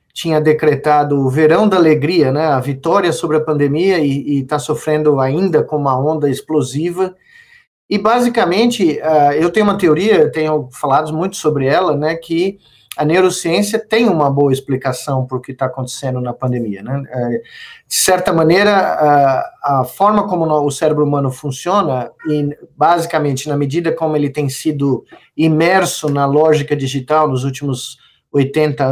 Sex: male